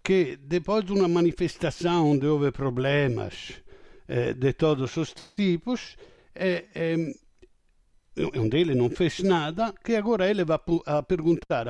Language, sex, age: Portuguese, male, 60-79